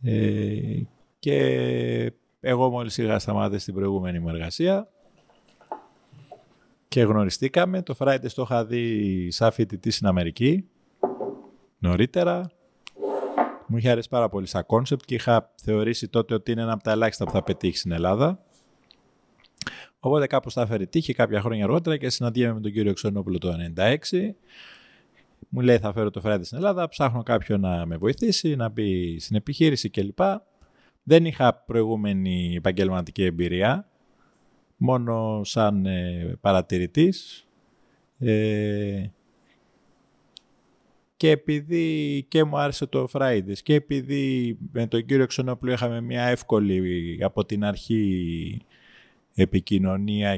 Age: 30-49